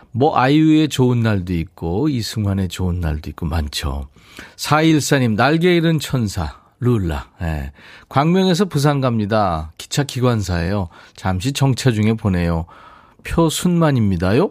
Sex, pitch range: male, 100-145 Hz